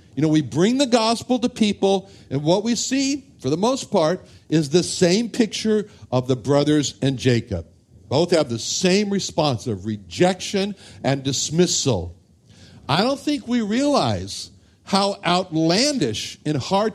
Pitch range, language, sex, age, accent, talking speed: 120-190 Hz, English, male, 60-79, American, 150 wpm